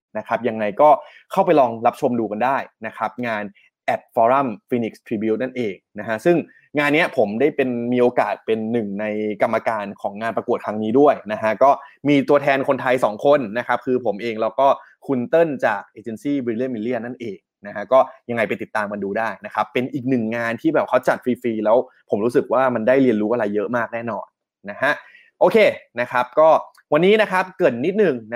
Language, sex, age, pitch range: Thai, male, 20-39, 115-145 Hz